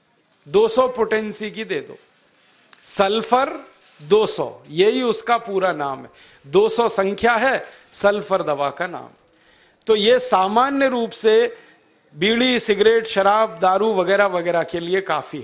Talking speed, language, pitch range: 130 wpm, Hindi, 195-245 Hz